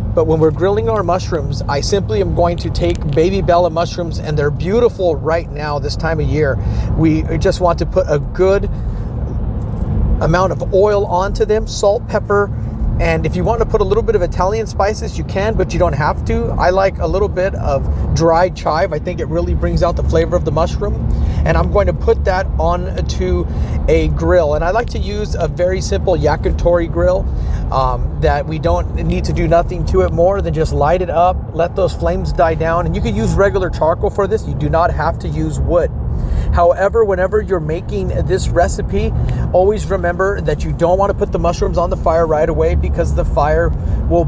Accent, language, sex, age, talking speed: American, English, male, 40-59, 215 wpm